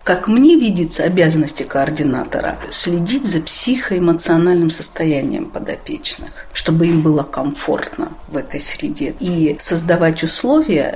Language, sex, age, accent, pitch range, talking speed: Russian, female, 50-69, native, 160-195 Hz, 110 wpm